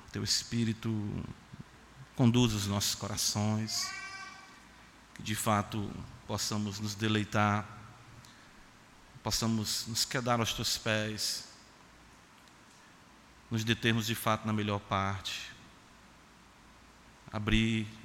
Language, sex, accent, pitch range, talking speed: Portuguese, male, Brazilian, 105-115 Hz, 85 wpm